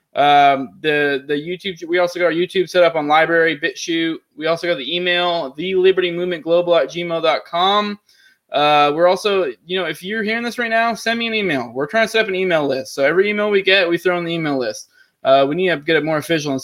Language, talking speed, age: English, 245 wpm, 20-39